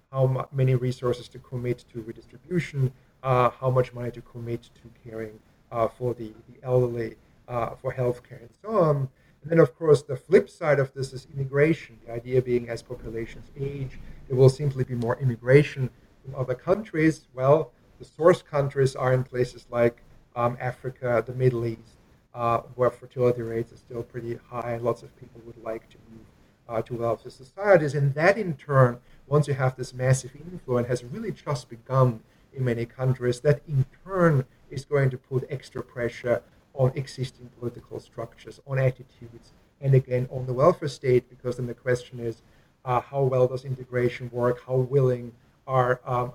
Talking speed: 175 wpm